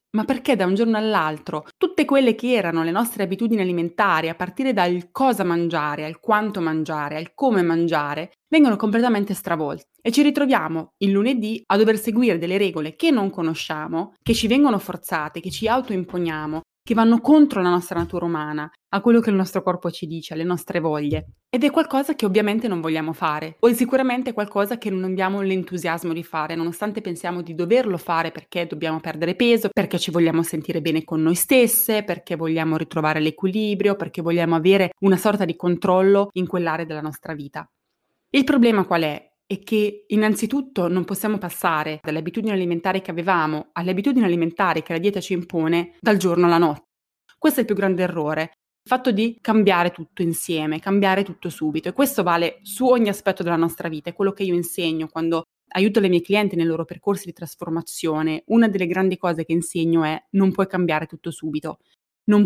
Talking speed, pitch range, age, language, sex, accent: 185 wpm, 165-210 Hz, 20-39, Italian, female, native